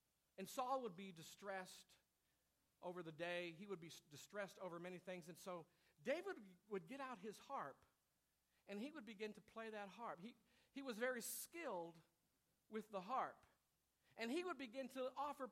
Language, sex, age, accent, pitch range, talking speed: English, male, 50-69, American, 190-280 Hz, 175 wpm